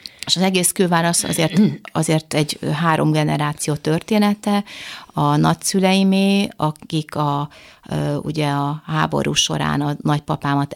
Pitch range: 145-175 Hz